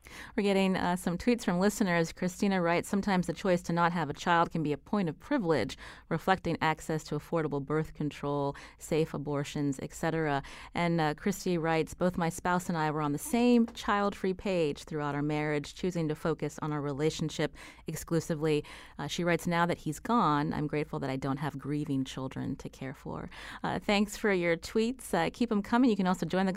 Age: 30-49